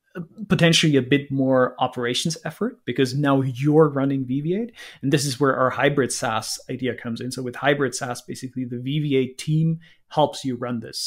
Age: 30-49